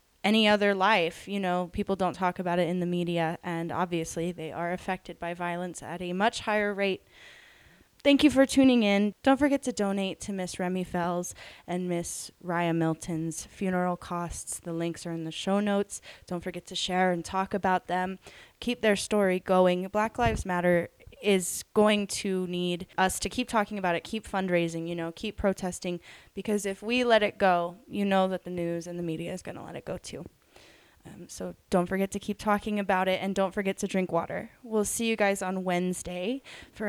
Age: 10-29